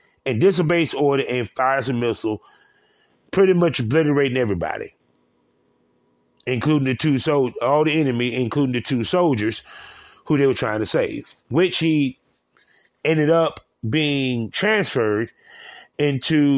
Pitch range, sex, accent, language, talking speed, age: 120-160 Hz, male, American, English, 125 wpm, 30-49